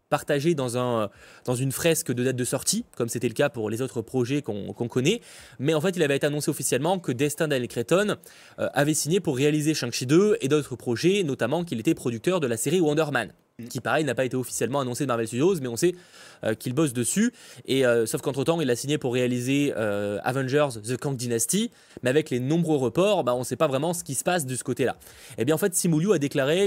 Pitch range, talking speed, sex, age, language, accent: 125-165 Hz, 245 wpm, male, 20-39, French, French